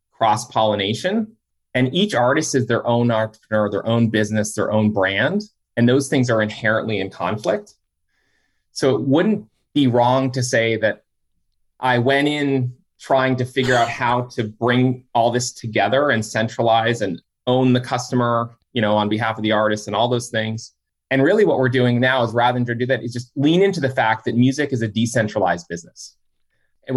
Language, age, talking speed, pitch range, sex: English, 30-49, 185 wpm, 115-140 Hz, male